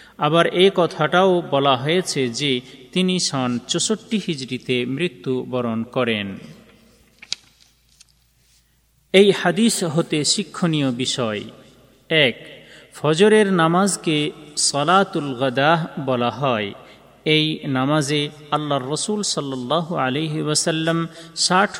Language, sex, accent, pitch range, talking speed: Bengali, male, native, 130-175 Hz, 85 wpm